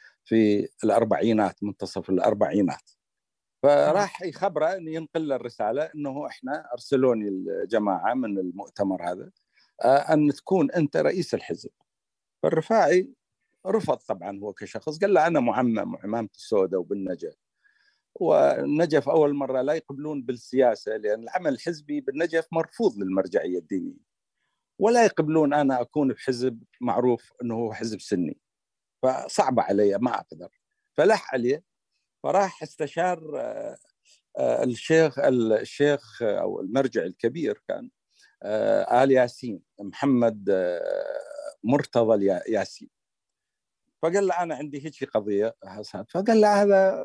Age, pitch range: 50-69, 120-180 Hz